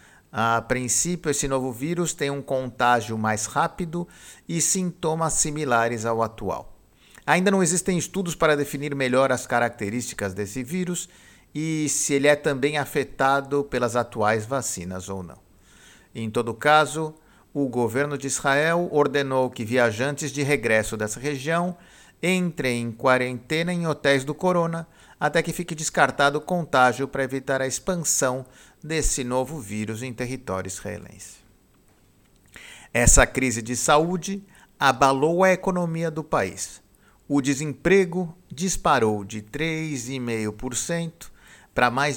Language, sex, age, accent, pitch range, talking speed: Portuguese, male, 50-69, Brazilian, 115-155 Hz, 130 wpm